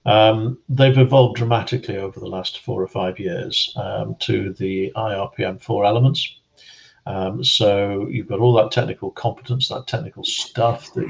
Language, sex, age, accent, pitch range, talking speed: English, male, 50-69, British, 100-125 Hz, 155 wpm